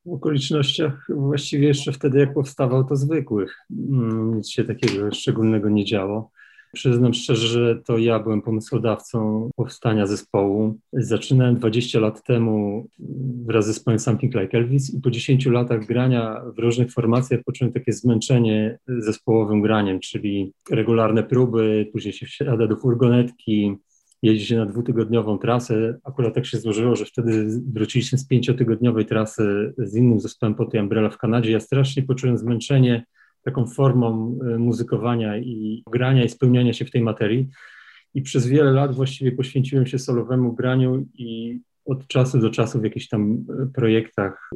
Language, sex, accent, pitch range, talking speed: Polish, male, native, 110-130 Hz, 150 wpm